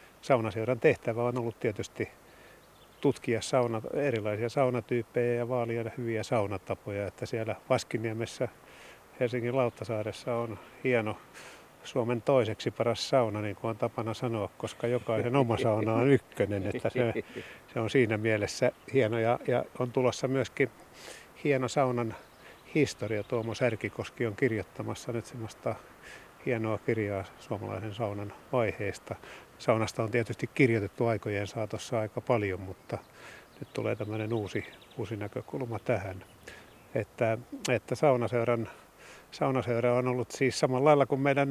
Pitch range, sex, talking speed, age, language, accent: 110-125 Hz, male, 130 wpm, 50-69, Finnish, native